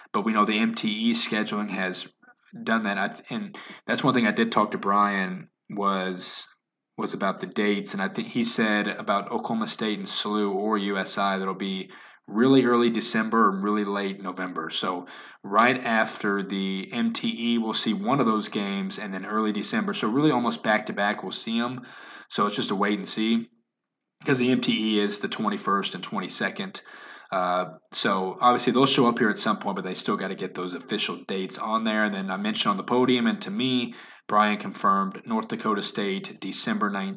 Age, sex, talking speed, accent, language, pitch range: 20-39, male, 195 wpm, American, English, 100-135 Hz